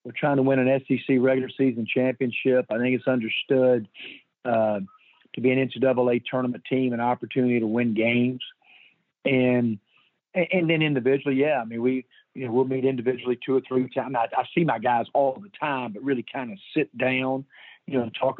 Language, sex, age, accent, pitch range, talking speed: English, male, 40-59, American, 125-140 Hz, 195 wpm